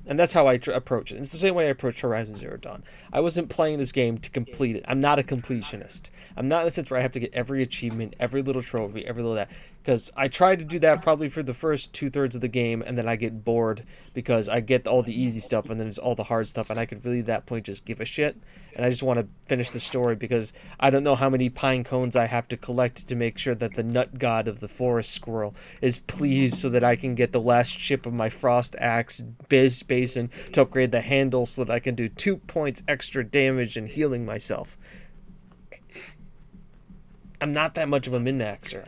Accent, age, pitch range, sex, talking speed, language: American, 20-39, 120-150 Hz, male, 250 wpm, English